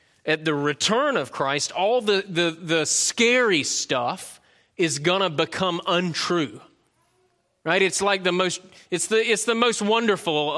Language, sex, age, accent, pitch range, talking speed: English, male, 30-49, American, 150-185 Hz, 155 wpm